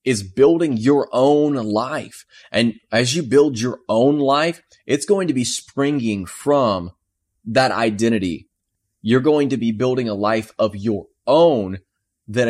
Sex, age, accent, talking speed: male, 30-49, American, 150 wpm